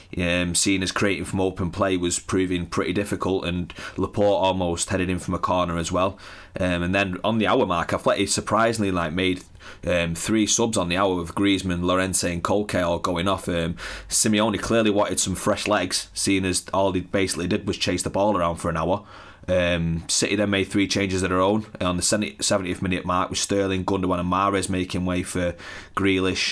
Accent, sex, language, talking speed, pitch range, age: British, male, English, 205 wpm, 90-105 Hz, 30-49